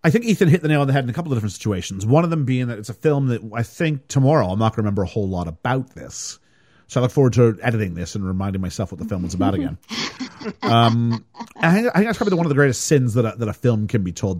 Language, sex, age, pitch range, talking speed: English, male, 40-59, 100-140 Hz, 300 wpm